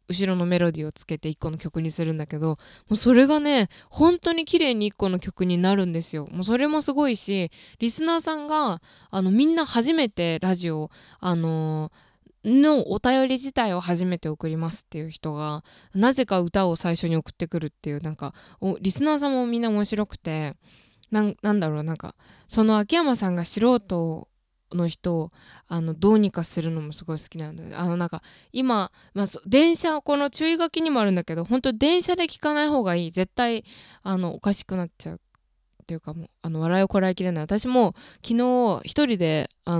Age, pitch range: 20-39, 165-240 Hz